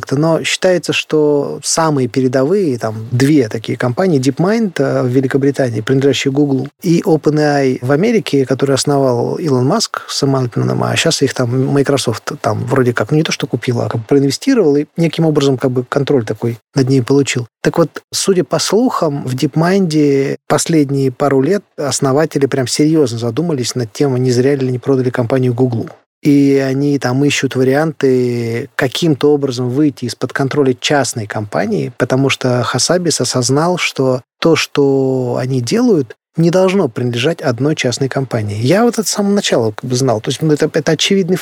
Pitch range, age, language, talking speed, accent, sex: 130-175 Hz, 20-39, Russian, 160 wpm, native, male